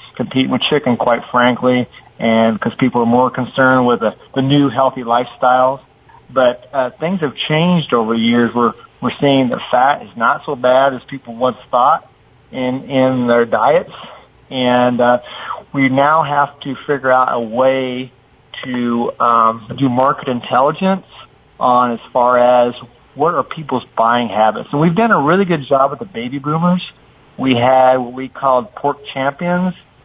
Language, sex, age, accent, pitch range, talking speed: English, male, 40-59, American, 125-140 Hz, 170 wpm